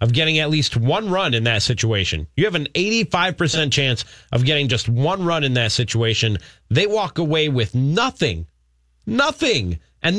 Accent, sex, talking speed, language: American, male, 170 wpm, English